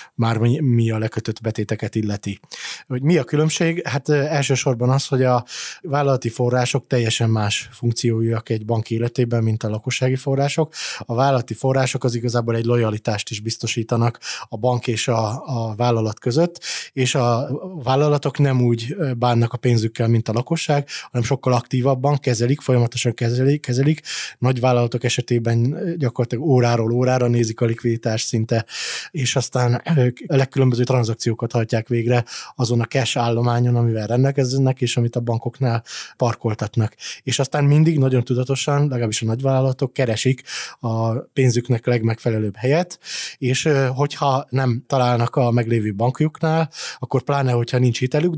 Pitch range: 115-135 Hz